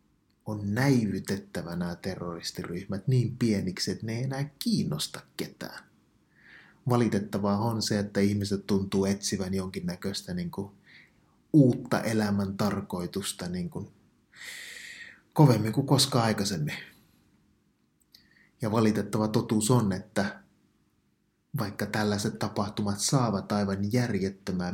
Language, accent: Finnish, native